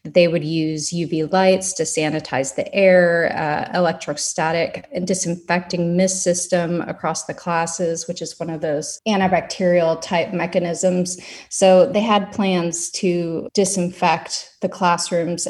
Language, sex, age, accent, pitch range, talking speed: English, female, 30-49, American, 165-195 Hz, 130 wpm